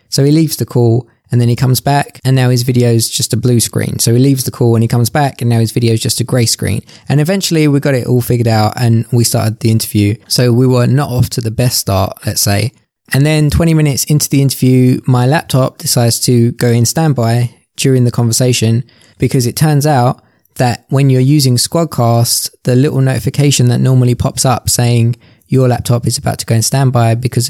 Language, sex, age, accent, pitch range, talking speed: English, male, 20-39, British, 115-135 Hz, 225 wpm